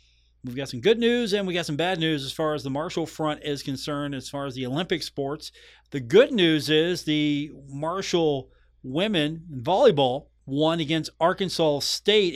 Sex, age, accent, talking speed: male, 40-59, American, 185 wpm